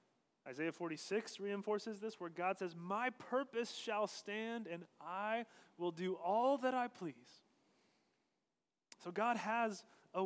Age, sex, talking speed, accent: 30-49, male, 135 wpm, American